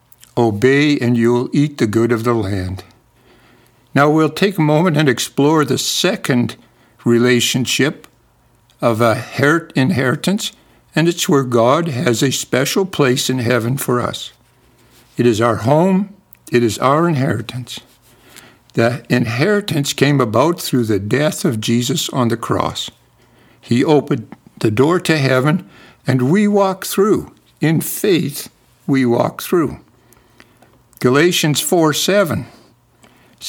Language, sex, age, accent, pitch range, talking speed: English, male, 60-79, American, 120-150 Hz, 130 wpm